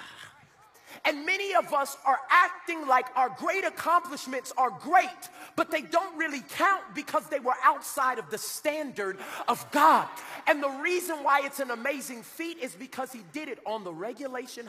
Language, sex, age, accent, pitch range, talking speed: English, male, 30-49, American, 240-325 Hz, 170 wpm